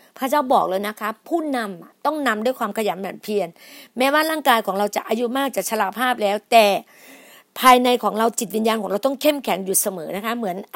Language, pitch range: Thai, 205-255 Hz